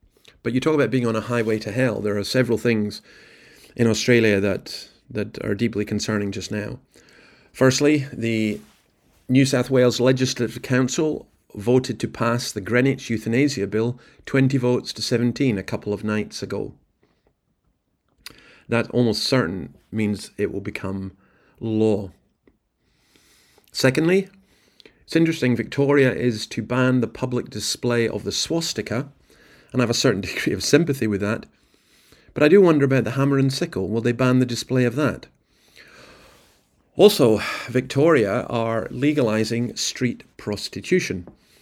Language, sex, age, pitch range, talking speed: English, male, 40-59, 105-130 Hz, 145 wpm